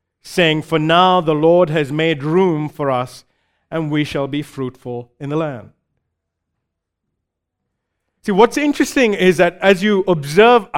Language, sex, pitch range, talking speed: English, male, 160-225 Hz, 145 wpm